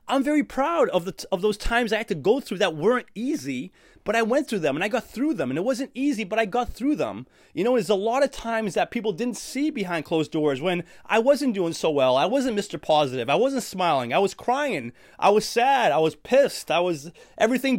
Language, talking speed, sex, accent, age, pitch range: English, 250 wpm, male, American, 30-49, 180-265 Hz